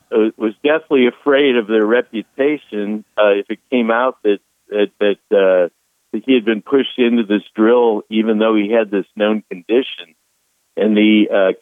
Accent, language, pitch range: American, English, 100-120 Hz